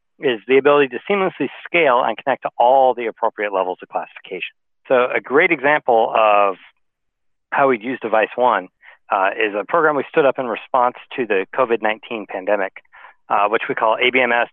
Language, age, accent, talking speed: English, 40-59, American, 180 wpm